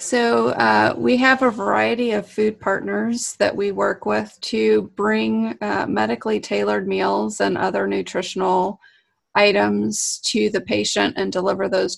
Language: English